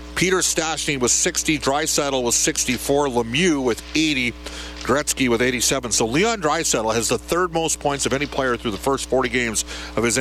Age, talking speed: 50-69, 180 wpm